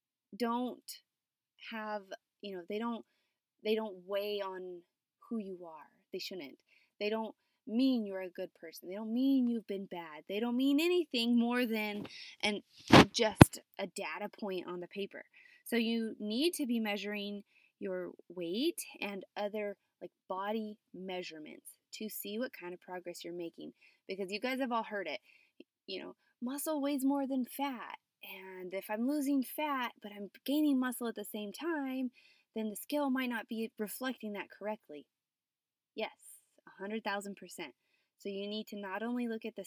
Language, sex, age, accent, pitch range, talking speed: English, female, 20-39, American, 195-250 Hz, 165 wpm